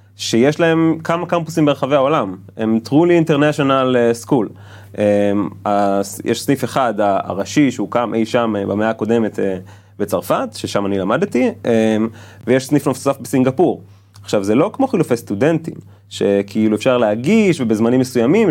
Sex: male